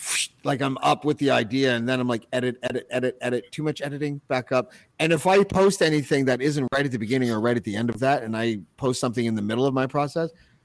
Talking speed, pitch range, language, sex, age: 265 wpm, 115-145 Hz, English, male, 40-59